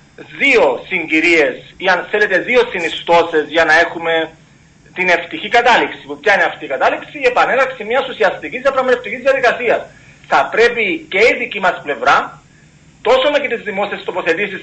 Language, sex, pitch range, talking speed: Greek, male, 170-255 Hz, 150 wpm